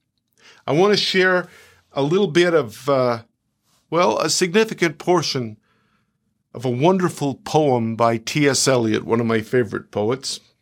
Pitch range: 115-155 Hz